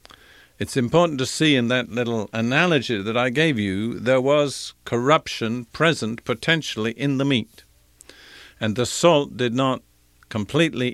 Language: English